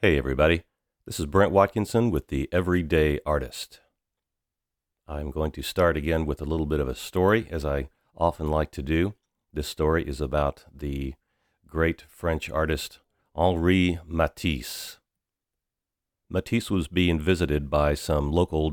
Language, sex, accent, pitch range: English, male, American, 75-85 Hz